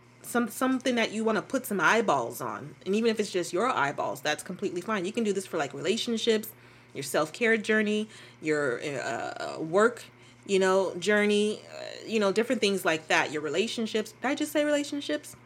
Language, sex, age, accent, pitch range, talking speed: English, female, 20-39, American, 165-225 Hz, 200 wpm